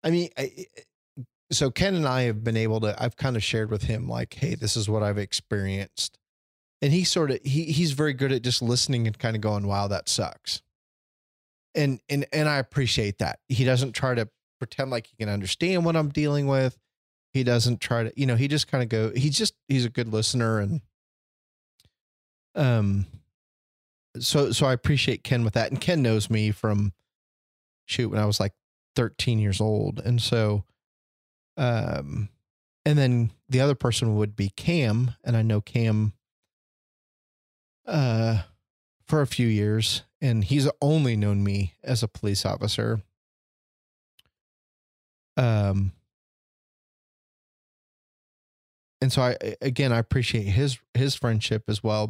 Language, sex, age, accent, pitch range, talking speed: English, male, 20-39, American, 105-130 Hz, 160 wpm